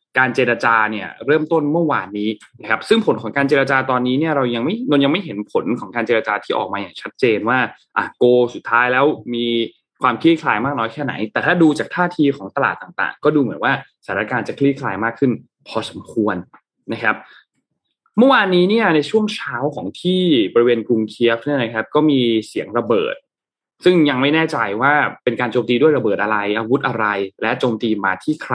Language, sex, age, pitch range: Thai, male, 20-39, 115-145 Hz